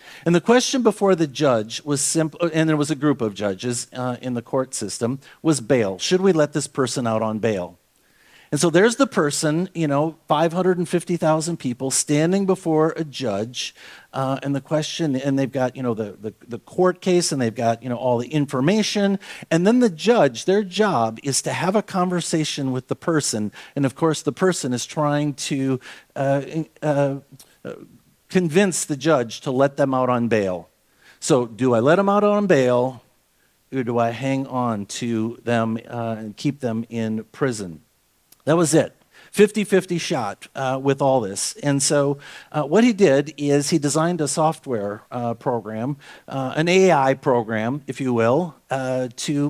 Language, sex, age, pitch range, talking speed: English, male, 50-69, 125-170 Hz, 180 wpm